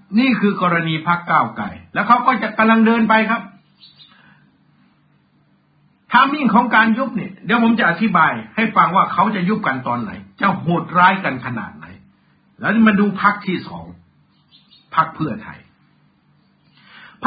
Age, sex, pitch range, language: 60-79, male, 165-220 Hz, Thai